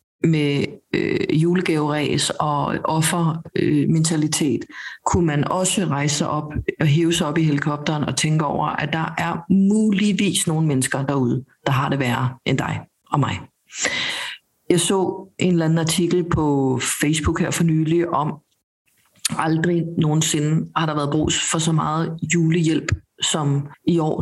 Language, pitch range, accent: Danish, 150-170 Hz, native